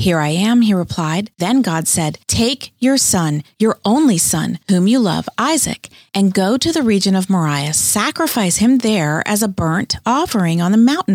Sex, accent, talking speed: female, American, 190 wpm